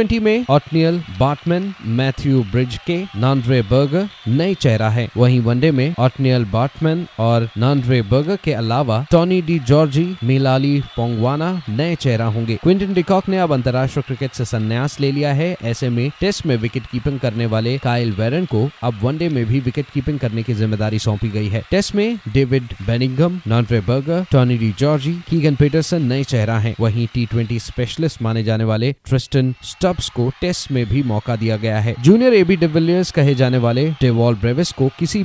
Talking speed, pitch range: 150 wpm, 120-155 Hz